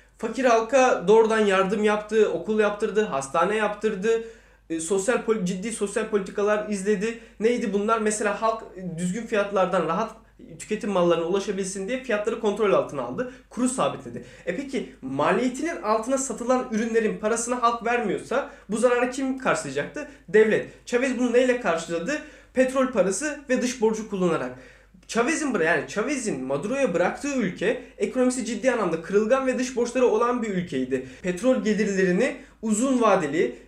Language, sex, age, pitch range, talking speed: Turkish, male, 20-39, 185-245 Hz, 135 wpm